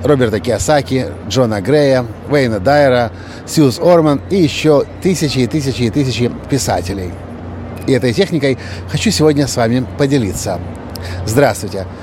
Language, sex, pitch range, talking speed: Russian, male, 115-150 Hz, 125 wpm